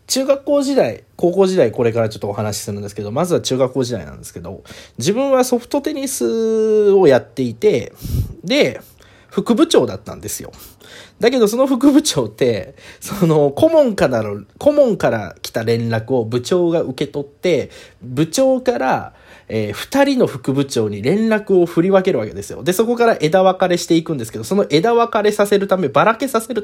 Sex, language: male, Japanese